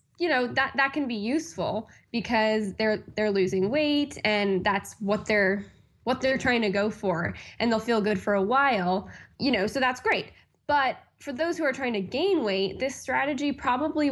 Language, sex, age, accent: English, female, 10-29, American